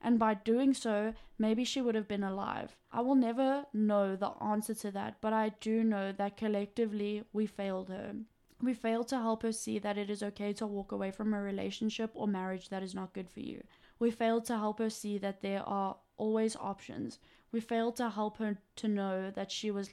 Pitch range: 200-225 Hz